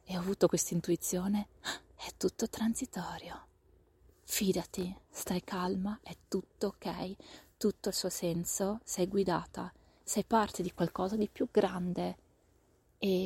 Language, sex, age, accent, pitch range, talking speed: Italian, female, 30-49, native, 175-205 Hz, 125 wpm